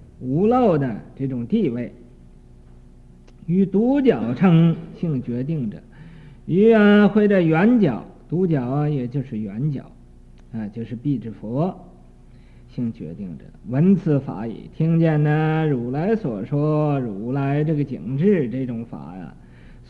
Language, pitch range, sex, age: Chinese, 130-185 Hz, male, 50-69